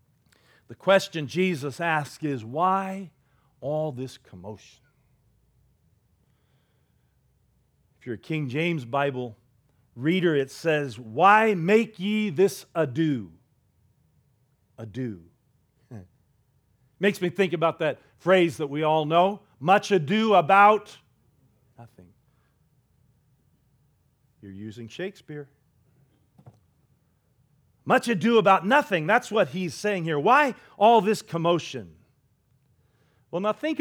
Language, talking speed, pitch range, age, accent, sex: English, 105 wpm, 130-200 Hz, 40-59, American, male